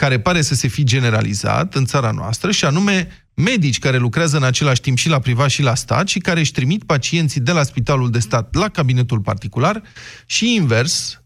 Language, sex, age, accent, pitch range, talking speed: Romanian, male, 30-49, native, 125-175 Hz, 205 wpm